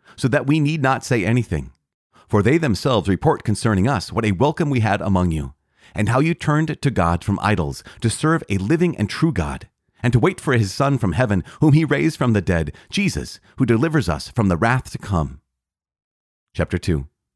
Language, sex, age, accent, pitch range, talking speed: English, male, 40-59, American, 90-130 Hz, 205 wpm